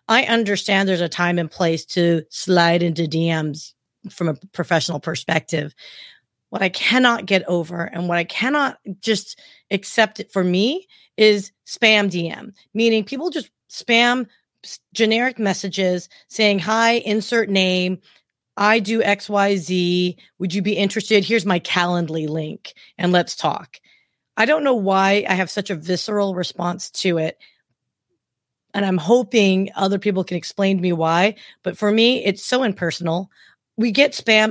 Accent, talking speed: American, 155 wpm